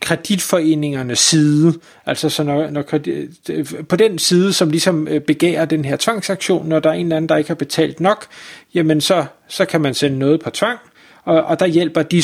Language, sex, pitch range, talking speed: Danish, male, 145-175 Hz, 195 wpm